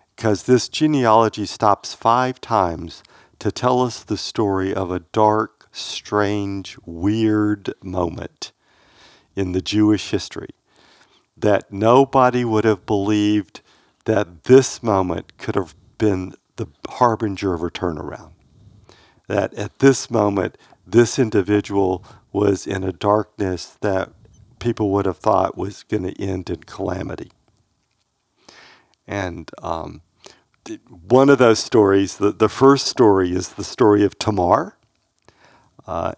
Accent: American